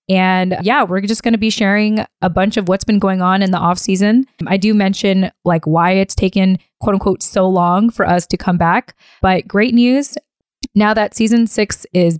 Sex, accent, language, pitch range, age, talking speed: female, American, English, 180-220 Hz, 20-39, 210 wpm